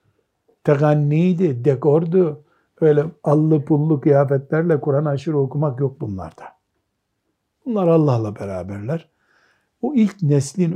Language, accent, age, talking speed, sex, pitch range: Turkish, native, 60-79, 95 wpm, male, 130-170 Hz